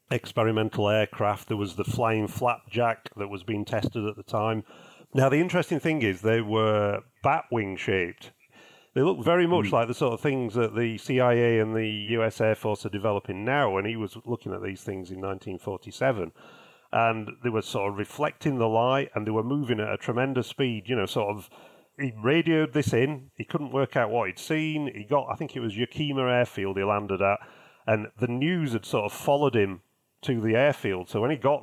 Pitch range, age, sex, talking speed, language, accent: 110-135 Hz, 40-59, male, 210 wpm, English, British